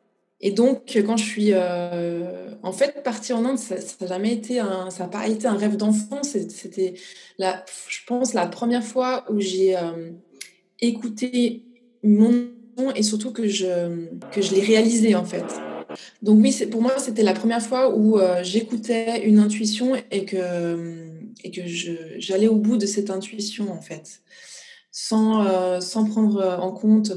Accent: French